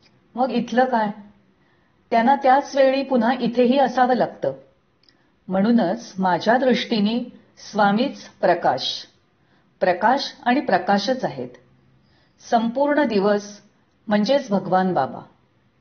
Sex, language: female, Marathi